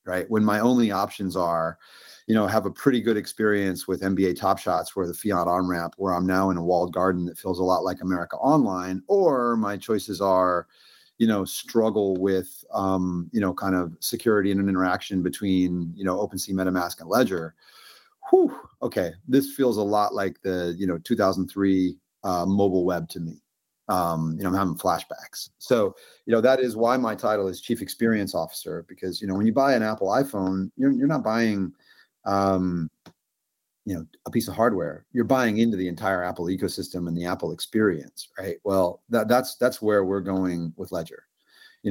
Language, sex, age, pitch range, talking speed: English, male, 30-49, 90-110 Hz, 195 wpm